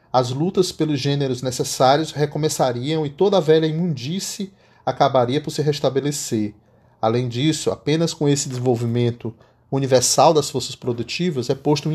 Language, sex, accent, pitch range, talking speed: Portuguese, male, Brazilian, 120-160 Hz, 140 wpm